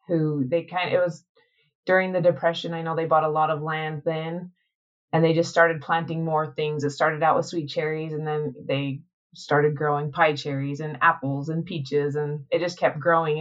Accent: American